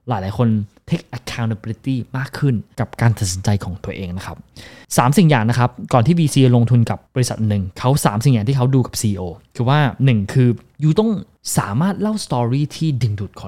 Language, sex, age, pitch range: Thai, male, 20-39, 110-145 Hz